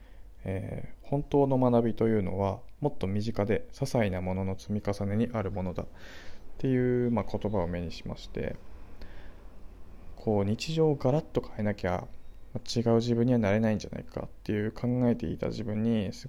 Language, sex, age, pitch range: Japanese, male, 20-39, 95-120 Hz